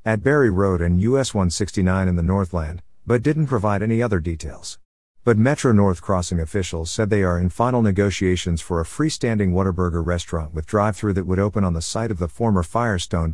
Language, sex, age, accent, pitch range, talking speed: English, male, 50-69, American, 85-110 Hz, 190 wpm